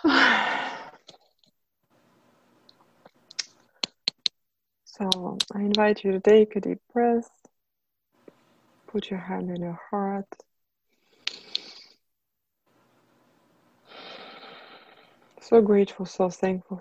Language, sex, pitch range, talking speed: English, female, 170-195 Hz, 70 wpm